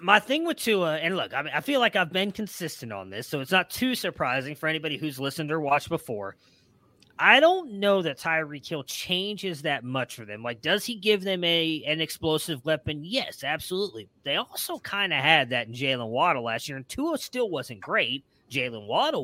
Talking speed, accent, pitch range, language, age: 210 wpm, American, 140-185 Hz, English, 30-49